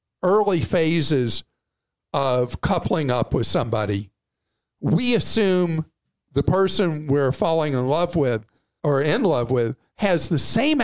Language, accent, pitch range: English, American, 145-195 Hz